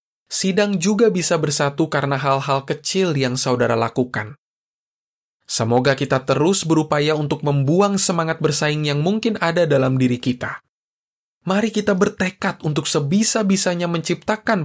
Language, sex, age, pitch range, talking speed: Indonesian, male, 20-39, 135-180 Hz, 125 wpm